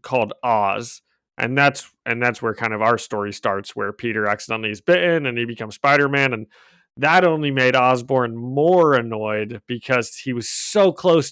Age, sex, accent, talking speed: 30-49, male, American, 175 wpm